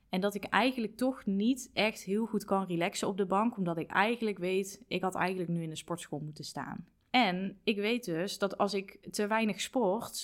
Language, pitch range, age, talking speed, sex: Dutch, 180-210 Hz, 20-39, 215 wpm, female